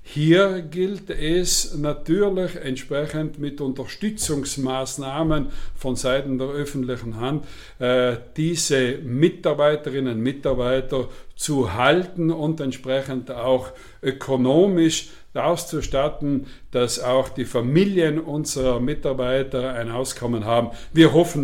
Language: German